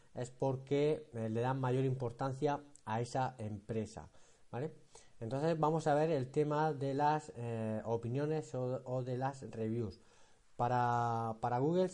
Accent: Spanish